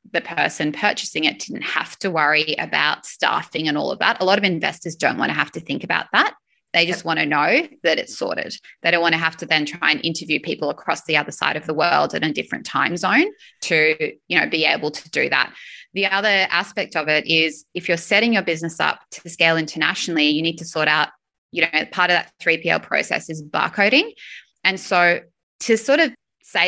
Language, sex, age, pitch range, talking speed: English, female, 20-39, 165-205 Hz, 225 wpm